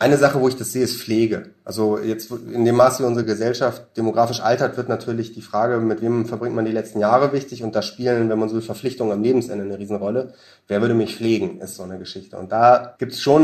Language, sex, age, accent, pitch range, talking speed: German, male, 30-49, German, 110-135 Hz, 240 wpm